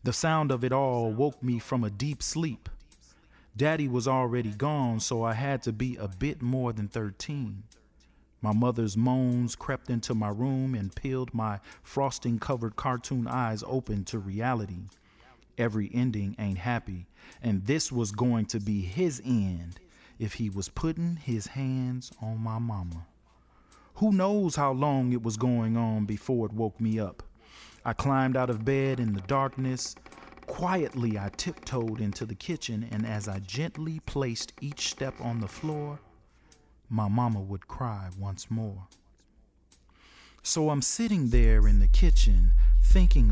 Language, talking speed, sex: English, 155 wpm, male